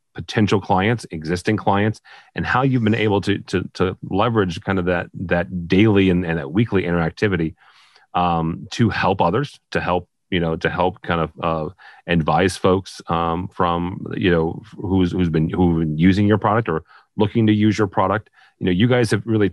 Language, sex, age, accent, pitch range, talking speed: English, male, 40-59, American, 85-105 Hz, 190 wpm